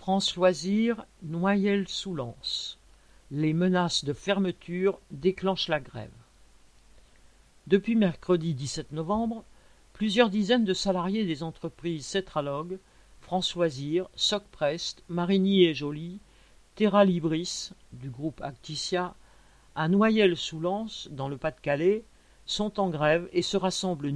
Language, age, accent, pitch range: French, 50-69, French, 160-200 Hz